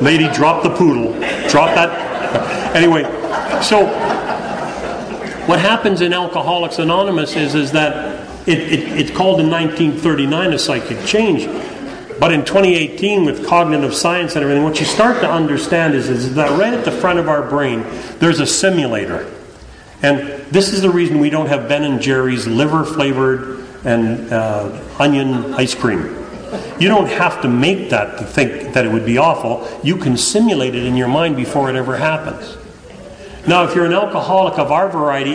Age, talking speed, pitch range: 40-59, 170 wpm, 135-175 Hz